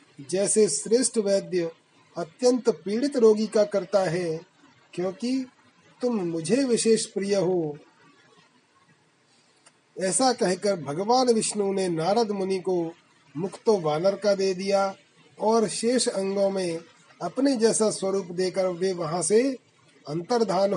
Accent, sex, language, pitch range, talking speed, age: native, male, Hindi, 175-220 Hz, 115 wpm, 30-49